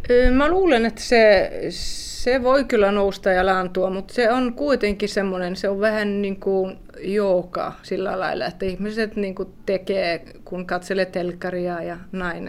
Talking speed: 155 wpm